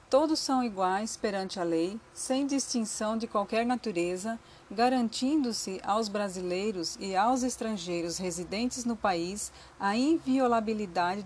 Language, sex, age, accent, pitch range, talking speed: Portuguese, female, 40-59, Brazilian, 190-250 Hz, 115 wpm